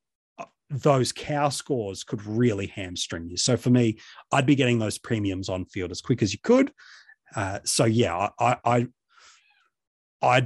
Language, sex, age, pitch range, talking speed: English, male, 30-49, 105-145 Hz, 160 wpm